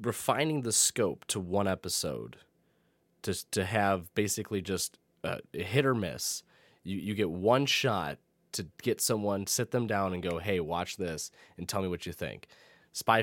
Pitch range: 95-120 Hz